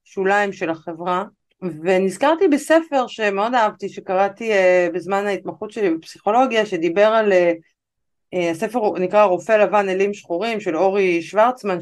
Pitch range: 185-245 Hz